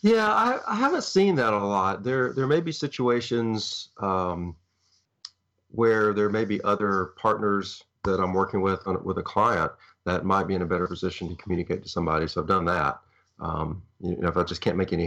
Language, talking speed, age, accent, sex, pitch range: English, 205 wpm, 40-59, American, male, 90-100 Hz